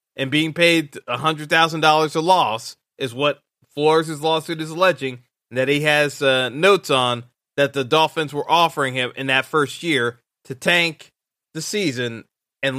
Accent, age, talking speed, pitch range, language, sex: American, 20-39, 160 wpm, 135-165 Hz, English, male